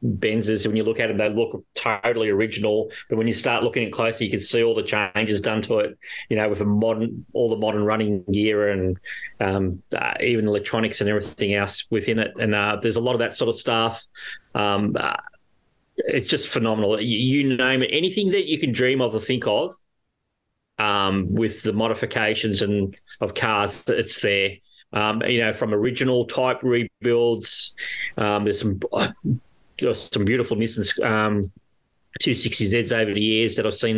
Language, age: English, 30-49